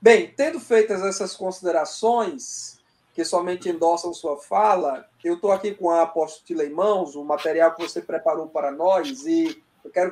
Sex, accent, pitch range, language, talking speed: male, Brazilian, 180-245 Hz, Portuguese, 160 wpm